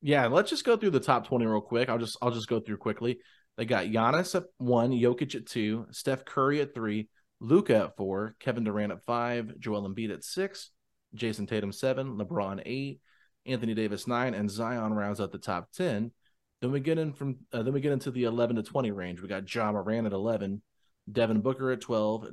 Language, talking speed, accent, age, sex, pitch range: English, 215 wpm, American, 30-49, male, 105-130 Hz